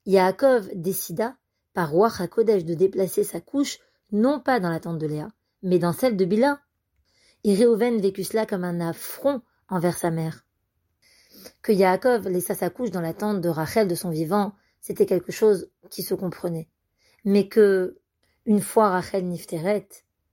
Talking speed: 165 wpm